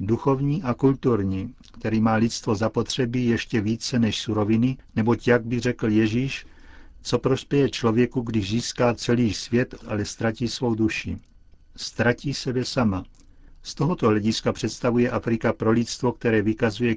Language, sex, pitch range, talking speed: Czech, male, 110-120 Hz, 140 wpm